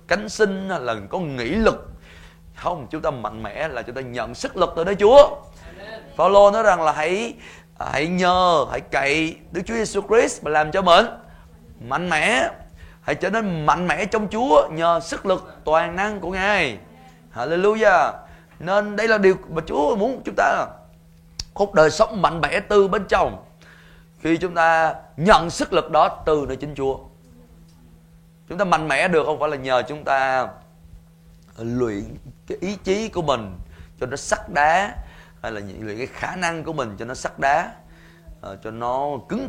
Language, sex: Vietnamese, male